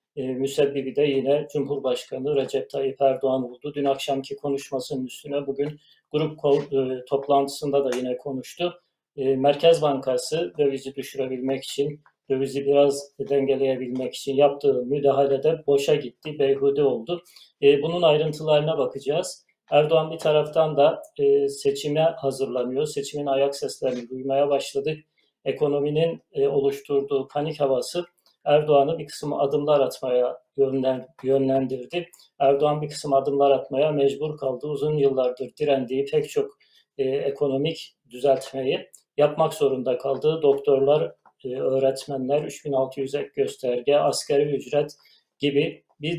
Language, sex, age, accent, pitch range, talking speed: Turkish, male, 40-59, native, 135-155 Hz, 110 wpm